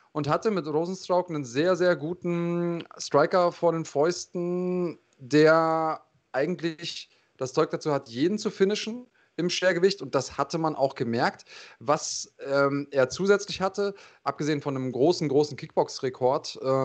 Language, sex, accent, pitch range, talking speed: German, male, German, 135-170 Hz, 145 wpm